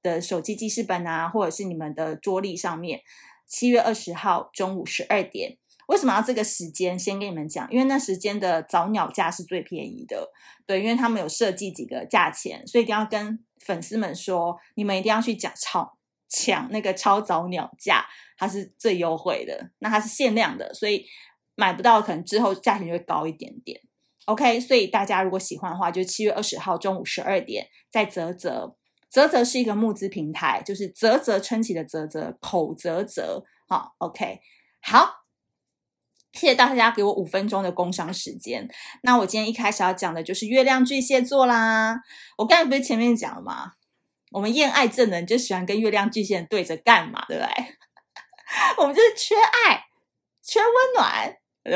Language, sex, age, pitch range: Chinese, female, 20-39, 185-240 Hz